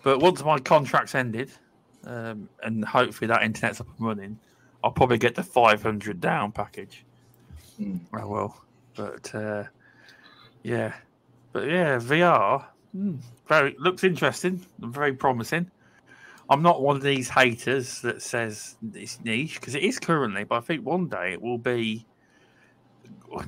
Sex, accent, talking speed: male, British, 150 wpm